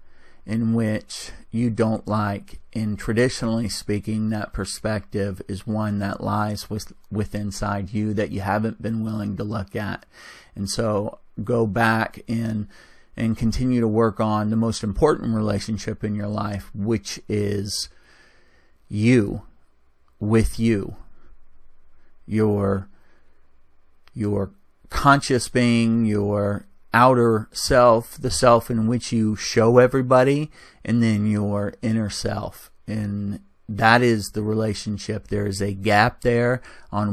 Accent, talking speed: American, 125 wpm